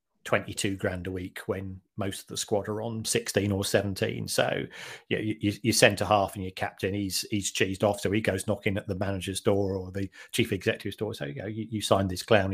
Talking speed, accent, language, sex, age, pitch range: 250 wpm, British, English, male, 40-59, 105-135 Hz